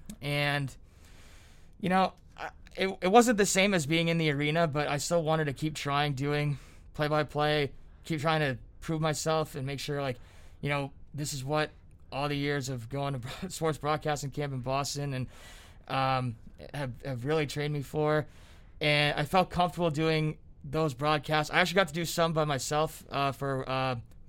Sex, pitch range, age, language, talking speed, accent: male, 140-165 Hz, 20-39, English, 180 wpm, American